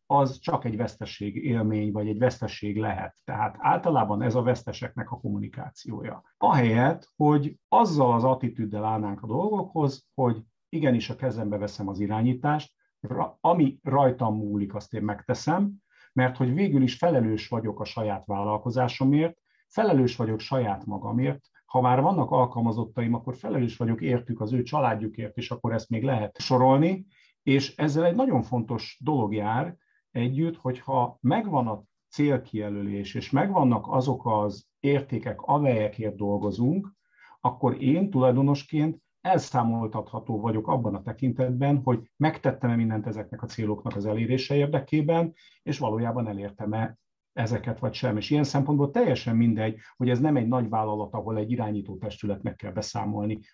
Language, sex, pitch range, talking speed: English, male, 110-140 Hz, 145 wpm